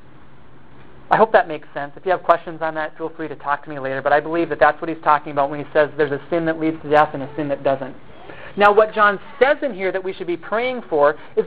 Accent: American